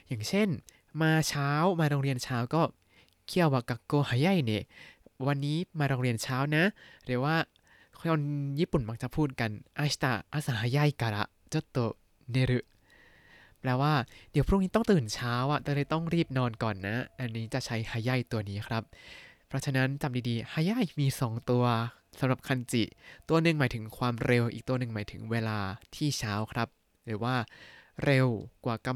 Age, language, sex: 20-39, Thai, male